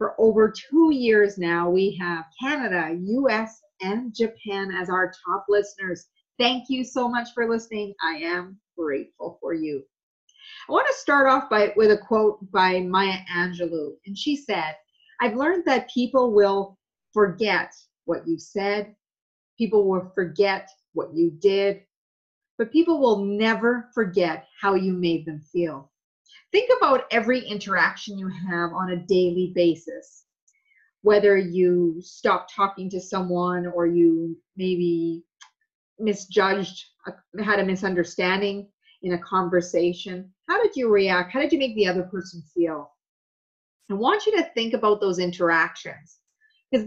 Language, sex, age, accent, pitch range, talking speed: English, female, 40-59, American, 180-235 Hz, 145 wpm